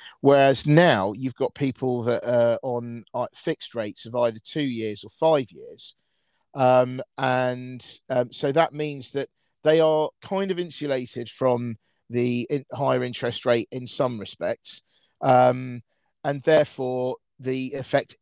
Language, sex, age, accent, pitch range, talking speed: English, male, 40-59, British, 115-145 Hz, 140 wpm